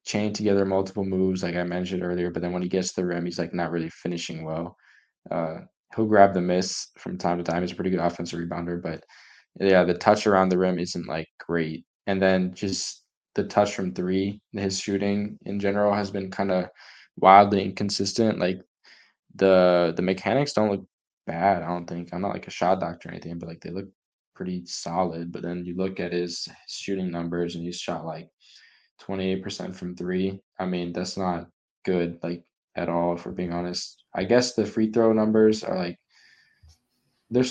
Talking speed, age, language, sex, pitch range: 200 wpm, 10-29, English, male, 90-100 Hz